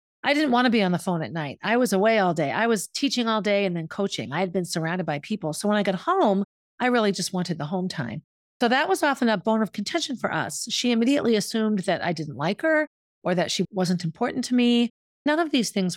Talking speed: 265 wpm